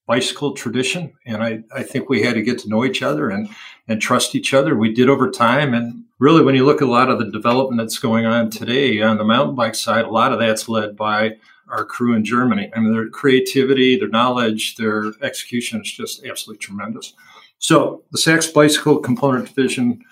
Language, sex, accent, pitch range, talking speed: English, male, American, 115-140 Hz, 210 wpm